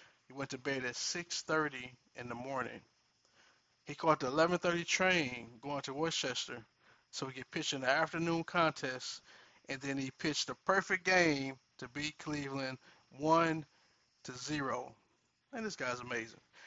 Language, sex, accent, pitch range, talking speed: English, male, American, 125-160 Hz, 150 wpm